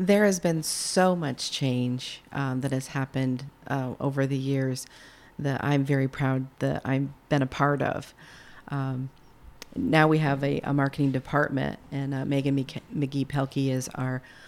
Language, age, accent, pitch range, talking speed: English, 40-59, American, 130-145 Hz, 160 wpm